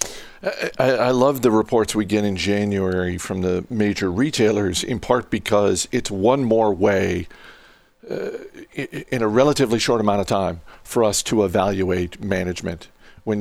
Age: 50-69